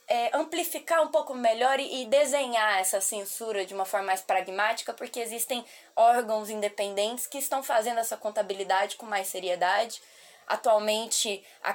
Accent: Brazilian